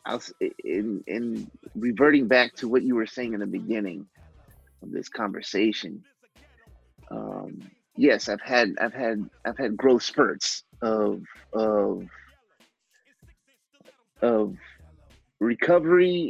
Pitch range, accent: 105-130 Hz, American